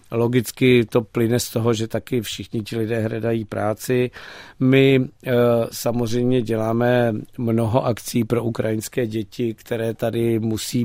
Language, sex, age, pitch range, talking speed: Czech, male, 50-69, 105-120 Hz, 125 wpm